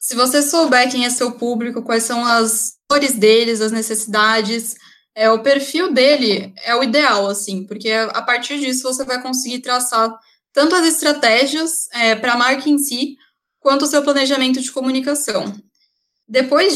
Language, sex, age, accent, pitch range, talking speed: Portuguese, female, 10-29, Brazilian, 225-280 Hz, 160 wpm